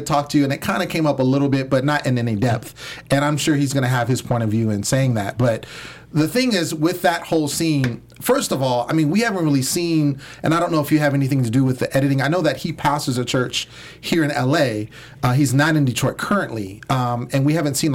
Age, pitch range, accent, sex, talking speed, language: 30-49, 130-160 Hz, American, male, 275 wpm, English